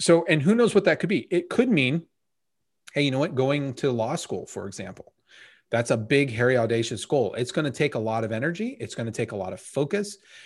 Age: 30-49